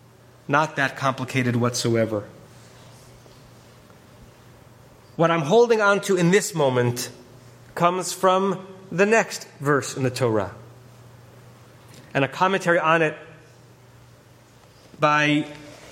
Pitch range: 125-185 Hz